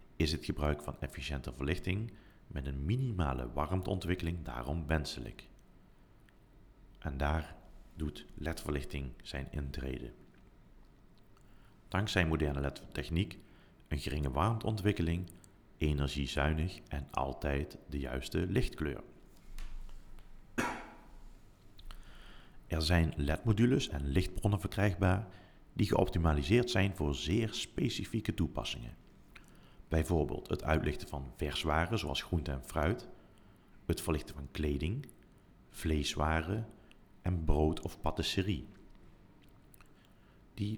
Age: 40-59